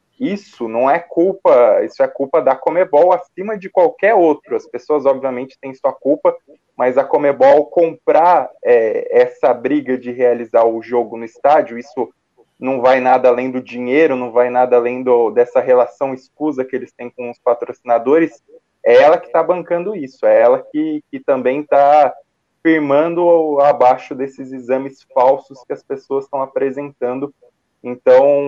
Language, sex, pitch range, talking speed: Portuguese, male, 125-170 Hz, 155 wpm